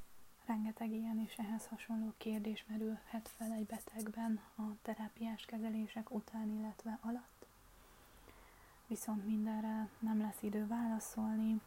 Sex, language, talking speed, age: female, Hungarian, 115 wpm, 20-39